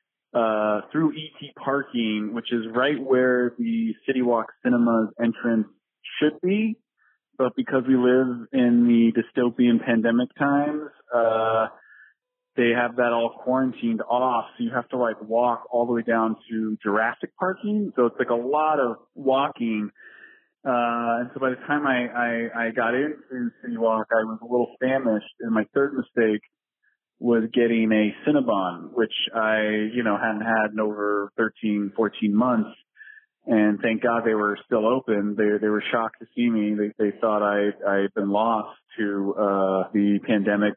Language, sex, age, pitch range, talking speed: English, male, 20-39, 105-125 Hz, 165 wpm